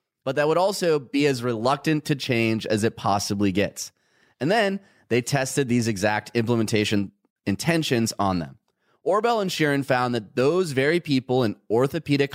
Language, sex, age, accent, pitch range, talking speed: English, male, 30-49, American, 110-150 Hz, 160 wpm